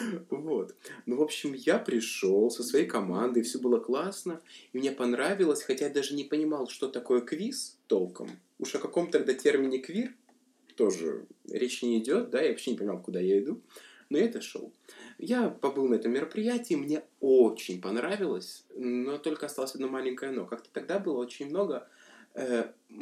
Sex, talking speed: male, 165 wpm